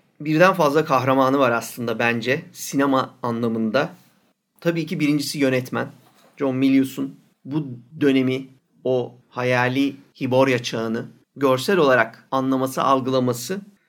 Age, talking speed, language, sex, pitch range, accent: 40-59, 105 wpm, Turkish, male, 125-155 Hz, native